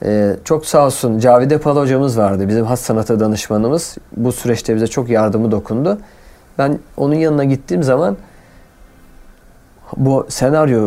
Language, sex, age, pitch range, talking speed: Turkish, male, 40-59, 105-145 Hz, 140 wpm